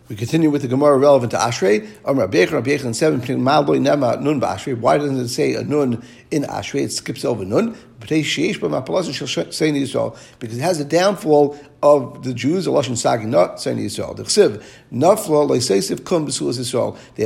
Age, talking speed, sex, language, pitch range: 60-79, 115 wpm, male, English, 130-155 Hz